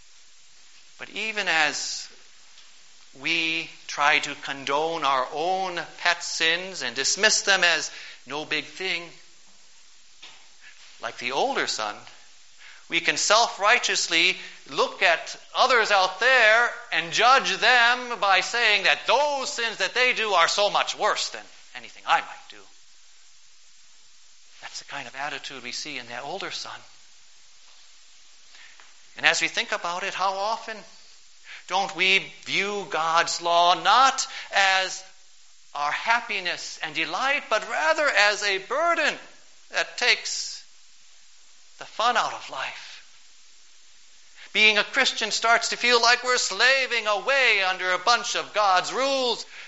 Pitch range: 170-235 Hz